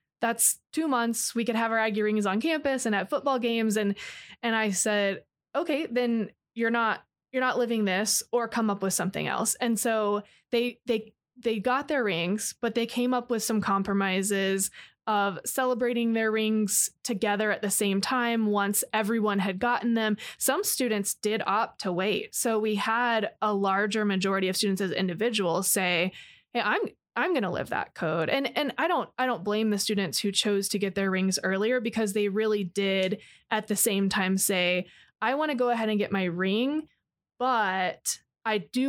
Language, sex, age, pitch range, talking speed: English, female, 20-39, 195-235 Hz, 190 wpm